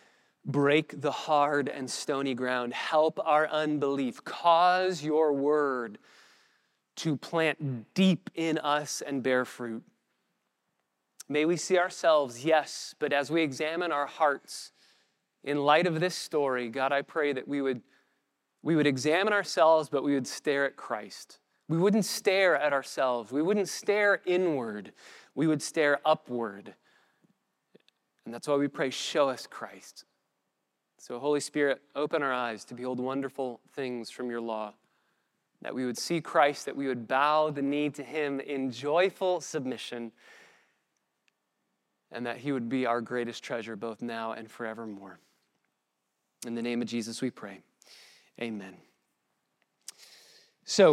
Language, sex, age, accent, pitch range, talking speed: English, male, 20-39, American, 120-155 Hz, 145 wpm